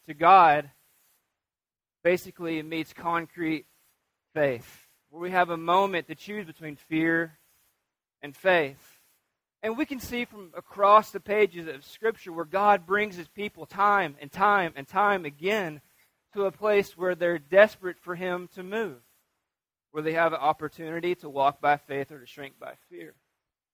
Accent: American